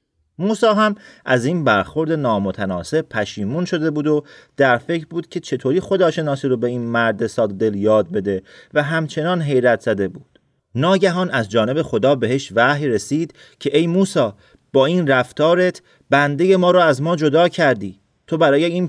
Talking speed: 170 wpm